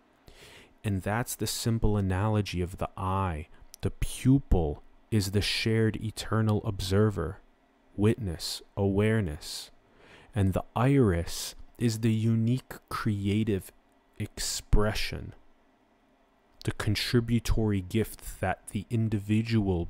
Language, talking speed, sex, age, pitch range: English, 95 wpm, male, 30-49, 95-115 Hz